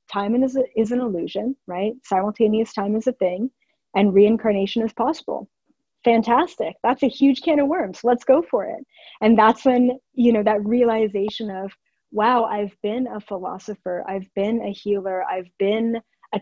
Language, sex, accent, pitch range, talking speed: English, female, American, 195-235 Hz, 170 wpm